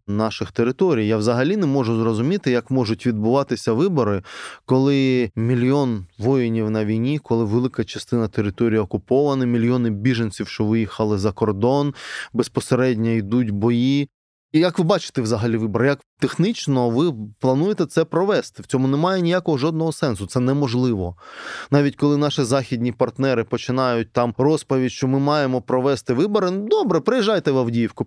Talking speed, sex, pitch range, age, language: 145 wpm, male, 115-150 Hz, 20-39, Ukrainian